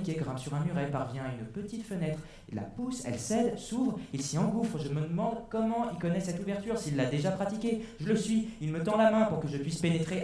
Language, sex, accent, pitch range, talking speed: French, male, French, 100-150 Hz, 265 wpm